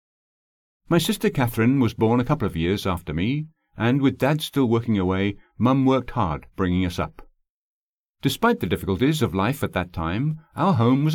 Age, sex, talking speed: 50-69, male, 185 wpm